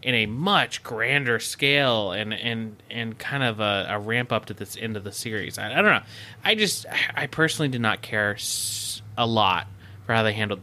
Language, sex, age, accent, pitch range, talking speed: English, male, 20-39, American, 105-145 Hz, 210 wpm